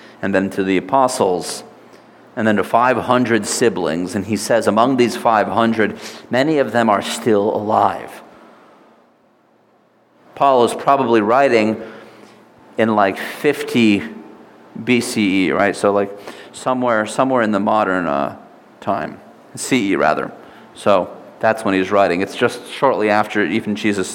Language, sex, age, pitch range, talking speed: English, male, 40-59, 100-120 Hz, 130 wpm